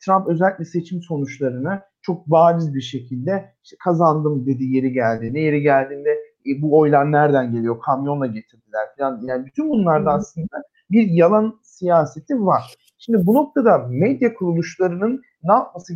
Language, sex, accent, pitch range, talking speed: Turkish, male, native, 150-215 Hz, 145 wpm